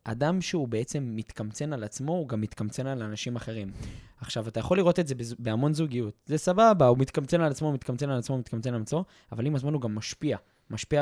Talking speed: 235 wpm